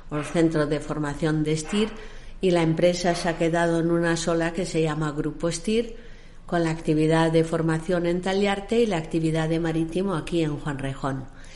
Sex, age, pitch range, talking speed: female, 50-69, 160-190 Hz, 185 wpm